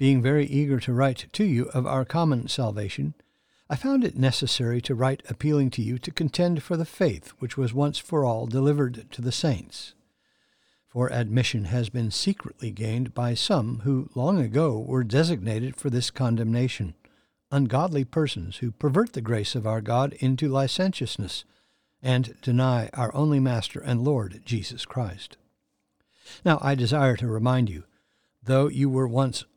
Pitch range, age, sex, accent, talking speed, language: 120-145 Hz, 60-79, male, American, 160 wpm, English